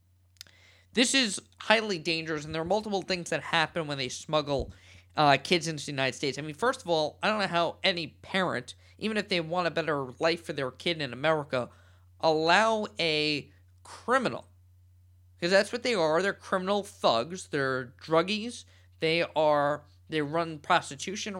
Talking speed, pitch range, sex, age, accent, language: 165 wpm, 125-185 Hz, male, 20-39, American, English